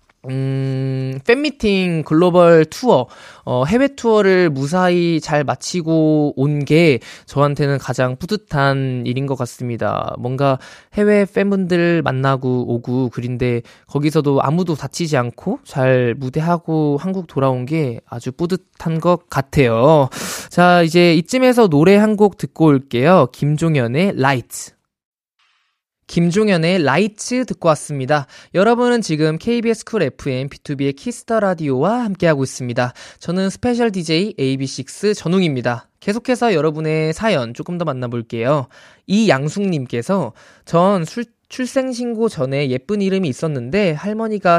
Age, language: 20-39, Korean